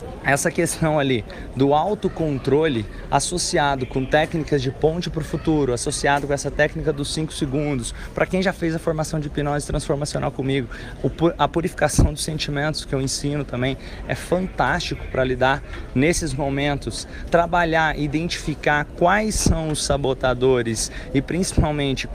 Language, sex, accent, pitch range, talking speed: Portuguese, male, Brazilian, 140-175 Hz, 140 wpm